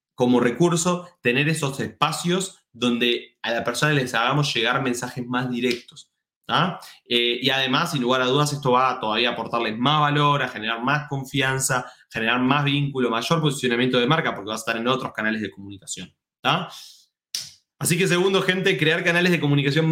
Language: Spanish